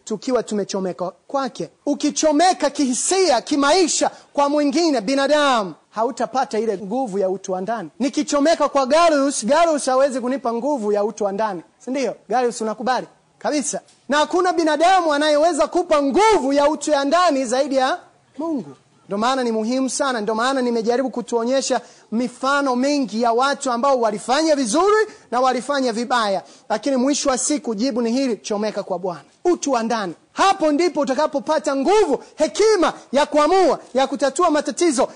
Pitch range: 240-305 Hz